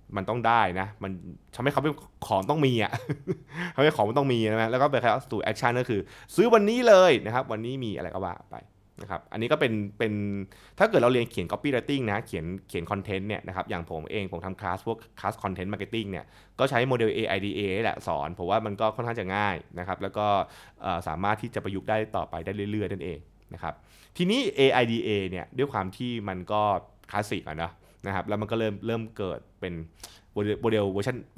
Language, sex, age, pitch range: Thai, male, 20-39, 100-125 Hz